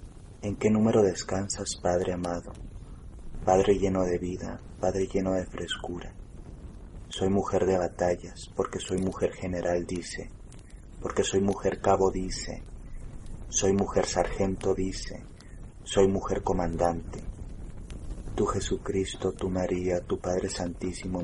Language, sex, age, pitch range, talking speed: Spanish, male, 30-49, 90-95 Hz, 120 wpm